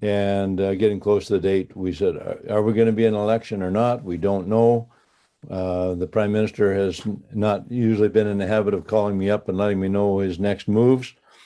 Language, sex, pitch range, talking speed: English, male, 100-115 Hz, 230 wpm